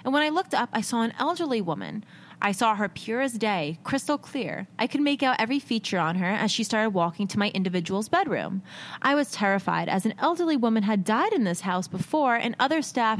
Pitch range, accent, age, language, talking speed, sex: 195-265 Hz, American, 20-39, English, 225 wpm, female